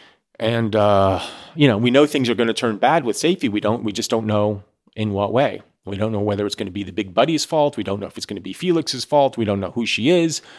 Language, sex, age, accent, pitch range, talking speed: English, male, 30-49, American, 105-150 Hz, 290 wpm